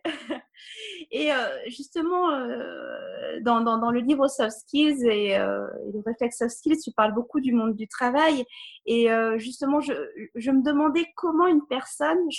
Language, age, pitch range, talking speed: French, 20-39, 225-295 Hz, 130 wpm